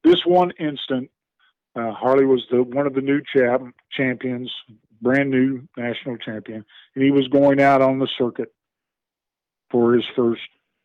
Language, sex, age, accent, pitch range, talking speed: English, male, 50-69, American, 120-140 Hz, 150 wpm